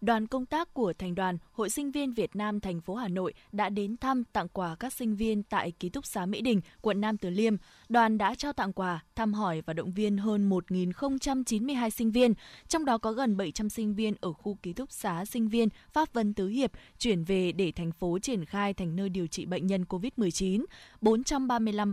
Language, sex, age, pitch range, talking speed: Vietnamese, female, 20-39, 190-240 Hz, 220 wpm